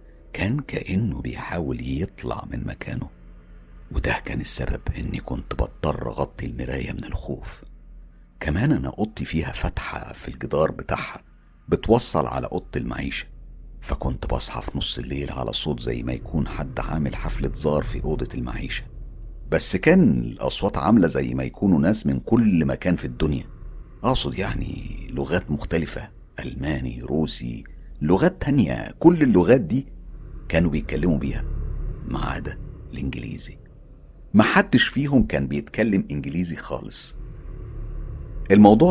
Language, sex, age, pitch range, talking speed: Arabic, male, 50-69, 65-90 Hz, 130 wpm